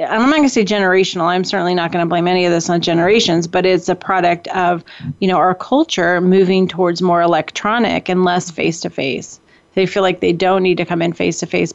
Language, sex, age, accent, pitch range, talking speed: English, female, 30-49, American, 175-210 Hz, 220 wpm